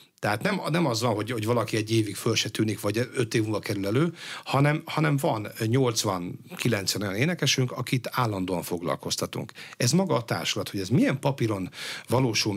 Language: Hungarian